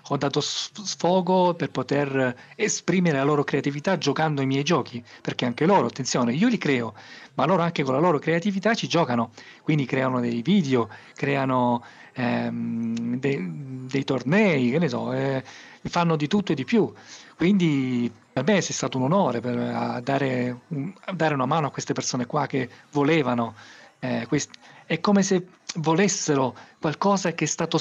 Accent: native